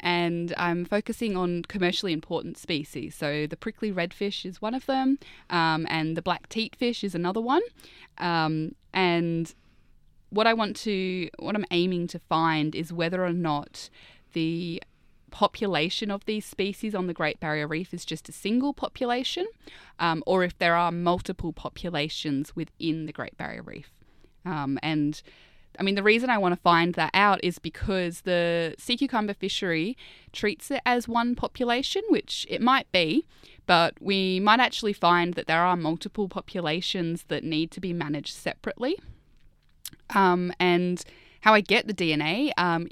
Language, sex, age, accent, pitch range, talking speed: English, female, 20-39, Australian, 165-215 Hz, 160 wpm